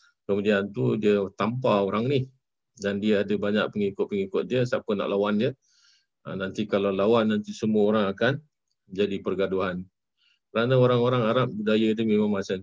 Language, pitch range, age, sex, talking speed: Malay, 100-120 Hz, 50-69, male, 155 wpm